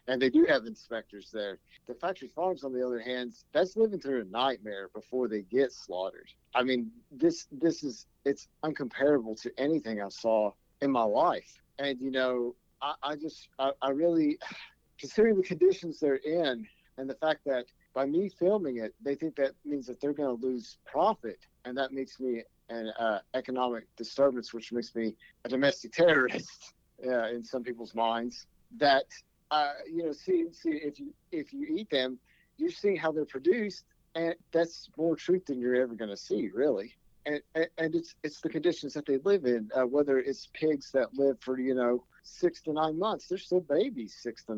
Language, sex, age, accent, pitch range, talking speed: English, male, 50-69, American, 125-165 Hz, 195 wpm